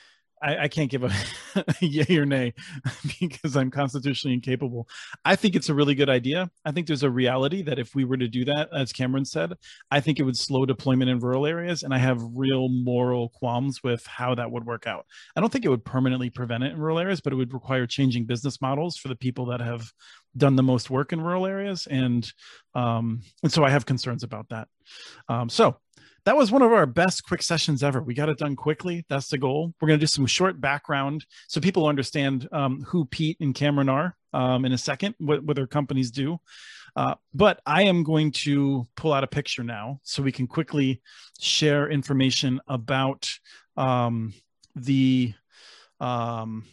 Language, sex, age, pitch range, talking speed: English, male, 40-59, 125-150 Hz, 205 wpm